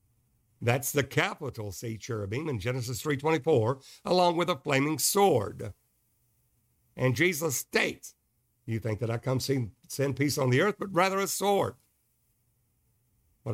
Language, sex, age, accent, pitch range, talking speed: English, male, 60-79, American, 115-145 Hz, 135 wpm